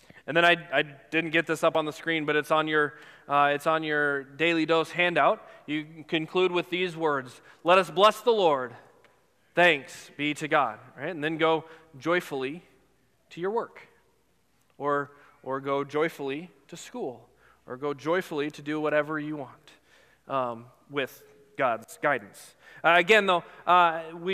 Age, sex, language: 20-39, male, English